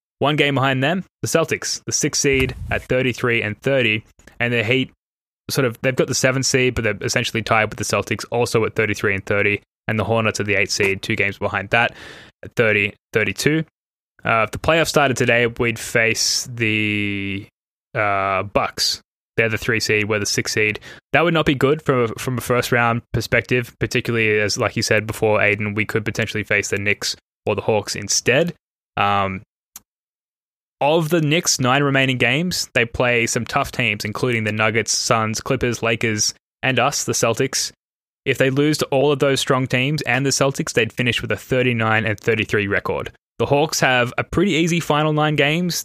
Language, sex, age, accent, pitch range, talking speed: English, male, 10-29, Australian, 110-135 Hz, 195 wpm